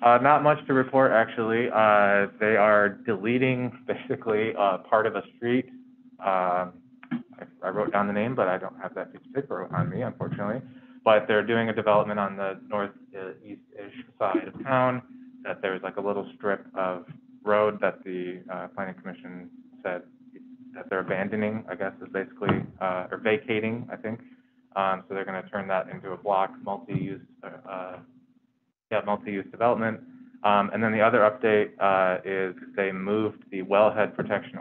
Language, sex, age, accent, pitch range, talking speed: English, male, 20-39, American, 95-130 Hz, 175 wpm